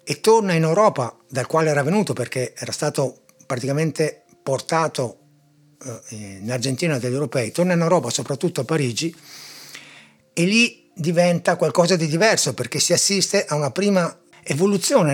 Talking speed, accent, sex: 145 wpm, native, male